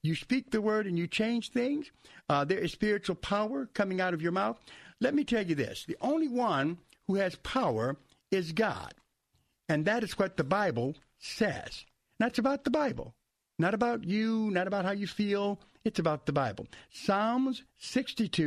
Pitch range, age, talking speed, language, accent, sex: 165-225 Hz, 60-79, 180 wpm, English, American, male